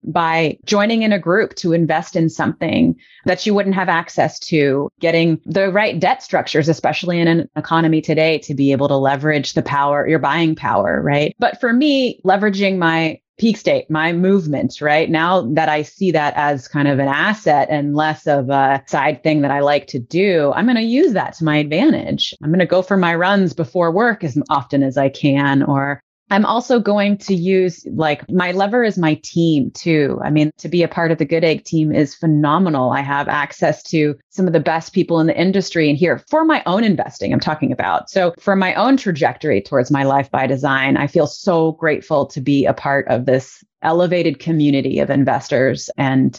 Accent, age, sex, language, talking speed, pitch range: American, 30-49, female, English, 210 wpm, 145-185 Hz